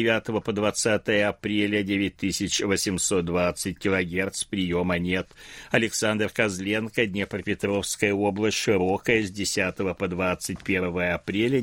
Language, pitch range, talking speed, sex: Russian, 90-115 Hz, 95 wpm, male